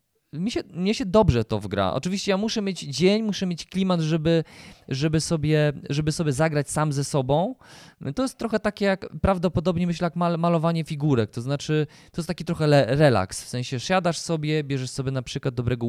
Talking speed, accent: 190 wpm, native